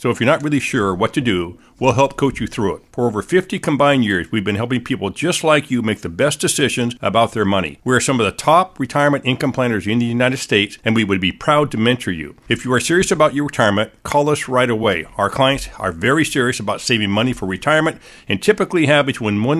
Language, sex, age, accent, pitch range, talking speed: English, male, 50-69, American, 115-145 Hz, 240 wpm